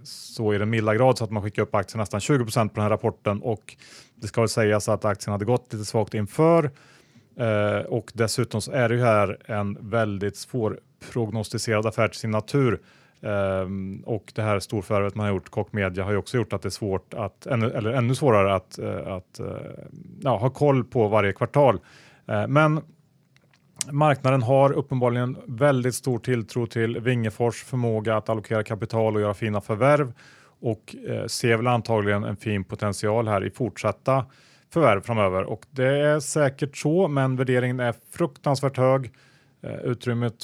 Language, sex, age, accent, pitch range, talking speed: Swedish, male, 30-49, Norwegian, 105-130 Hz, 175 wpm